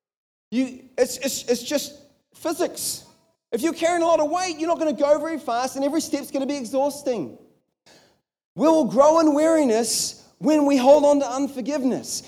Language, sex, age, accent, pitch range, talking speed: English, male, 30-49, Australian, 240-295 Hz, 185 wpm